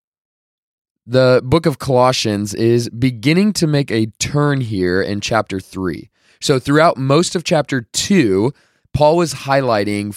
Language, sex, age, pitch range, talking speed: English, male, 20-39, 110-150 Hz, 135 wpm